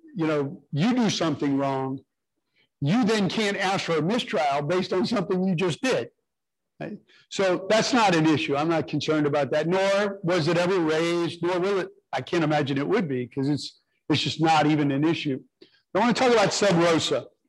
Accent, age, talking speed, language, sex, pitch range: American, 60-79, 200 wpm, English, male, 155-215 Hz